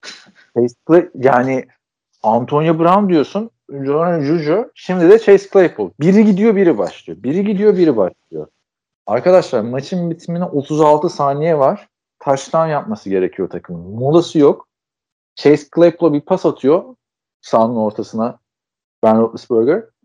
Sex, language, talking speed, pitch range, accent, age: male, Turkish, 120 wpm, 120-180 Hz, native, 50-69